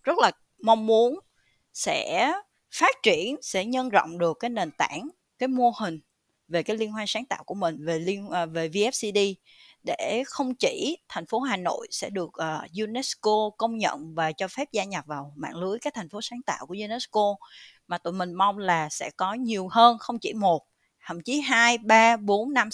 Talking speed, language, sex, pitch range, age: 195 wpm, Vietnamese, female, 175-235 Hz, 20-39